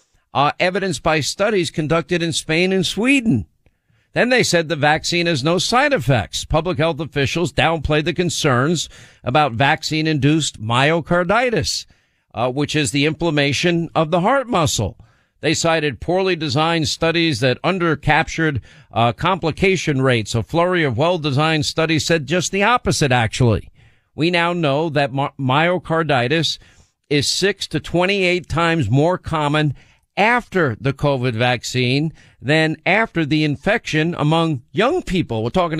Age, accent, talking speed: 50-69, American, 135 wpm